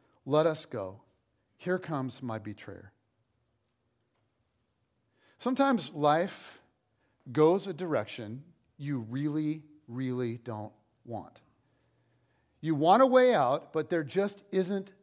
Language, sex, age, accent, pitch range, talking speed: English, male, 40-59, American, 130-210 Hz, 105 wpm